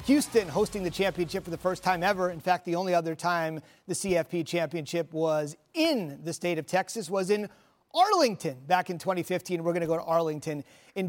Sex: male